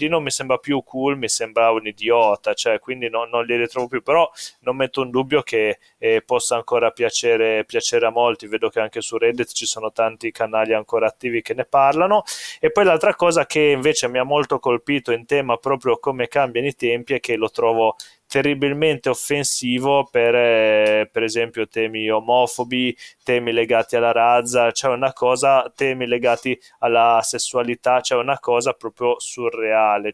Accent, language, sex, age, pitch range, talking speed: native, Italian, male, 20-39, 115-145 Hz, 175 wpm